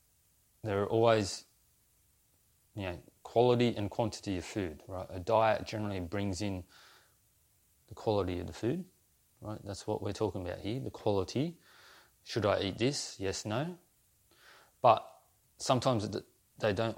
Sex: male